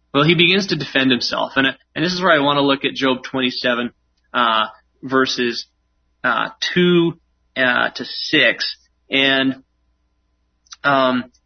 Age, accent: 30-49, American